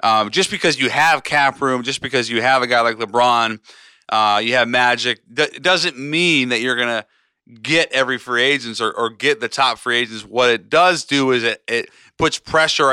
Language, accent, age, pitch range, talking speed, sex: English, American, 30-49, 115-140 Hz, 210 wpm, male